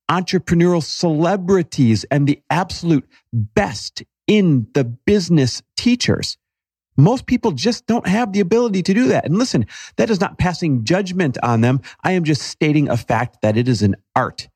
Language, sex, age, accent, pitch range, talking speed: English, male, 40-59, American, 105-140 Hz, 165 wpm